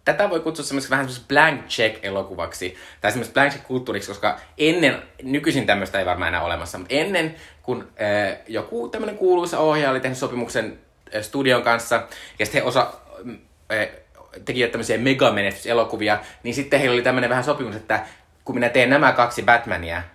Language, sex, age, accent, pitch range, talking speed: Finnish, male, 20-39, native, 95-125 Hz, 165 wpm